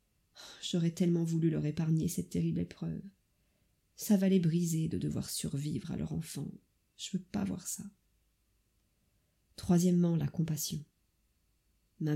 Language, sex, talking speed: French, female, 130 wpm